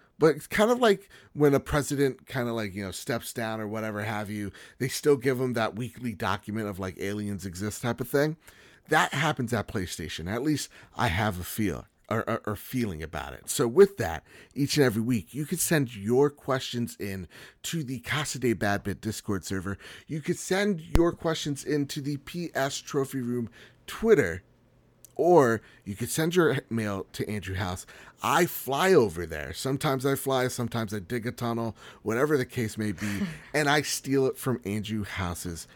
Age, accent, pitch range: 30-49, American, 100-140 Hz